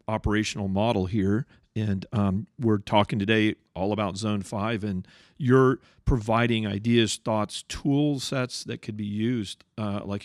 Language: English